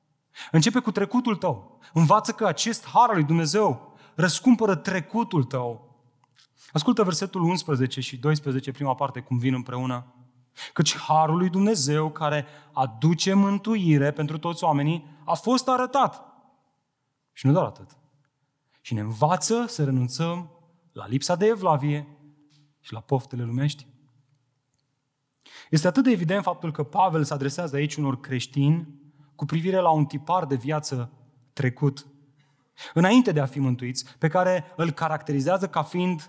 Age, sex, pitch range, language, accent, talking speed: 30-49, male, 140-195 Hz, Romanian, native, 140 wpm